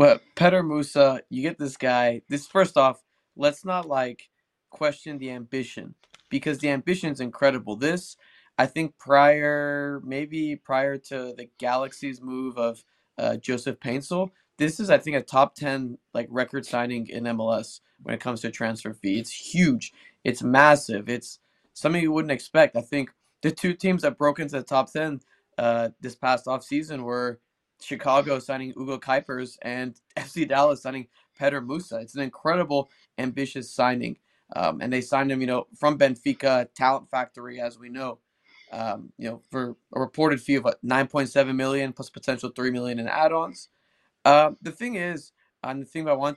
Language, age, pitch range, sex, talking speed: English, 20-39, 125-150 Hz, male, 175 wpm